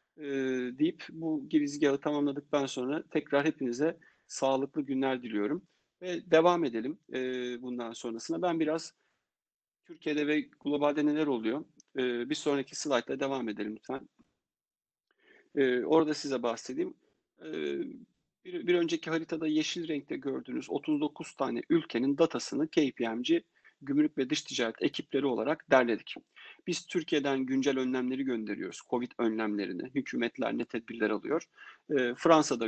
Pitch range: 125-170 Hz